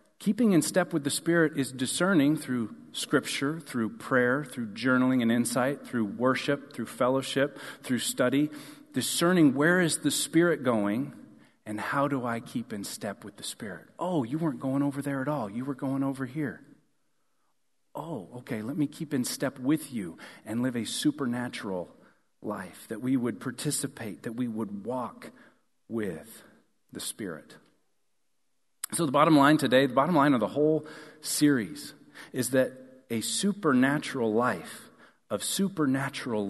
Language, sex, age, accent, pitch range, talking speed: English, male, 40-59, American, 125-150 Hz, 155 wpm